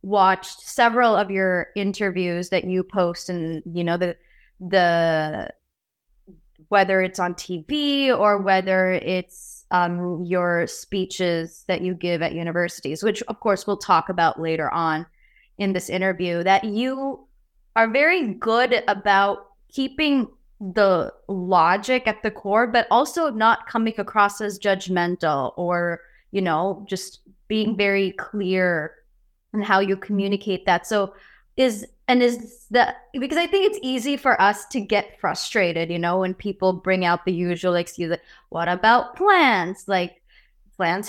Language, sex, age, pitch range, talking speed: English, female, 20-39, 180-240 Hz, 145 wpm